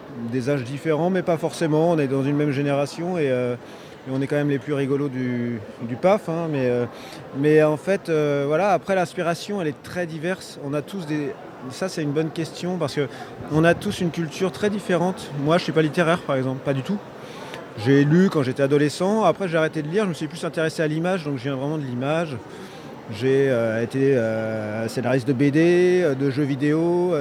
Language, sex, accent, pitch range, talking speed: French, male, French, 135-175 Hz, 220 wpm